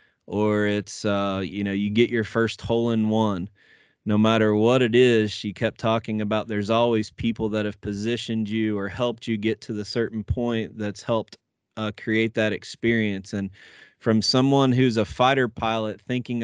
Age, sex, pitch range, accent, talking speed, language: 20-39, male, 100-115 Hz, American, 185 wpm, English